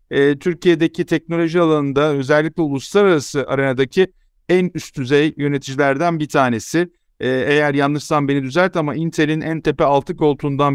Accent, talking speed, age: native, 125 wpm, 50-69